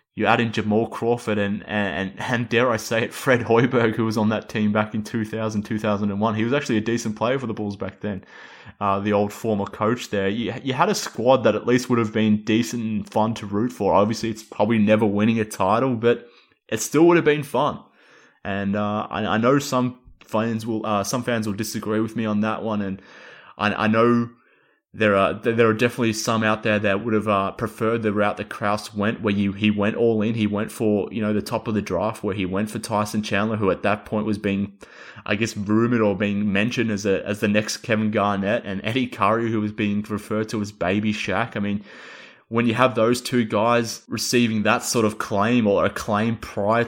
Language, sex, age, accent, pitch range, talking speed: English, male, 20-39, Australian, 105-115 Hz, 235 wpm